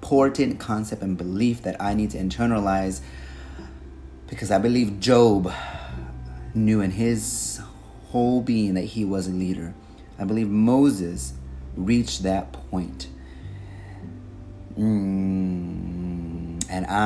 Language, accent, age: English, American, 30-49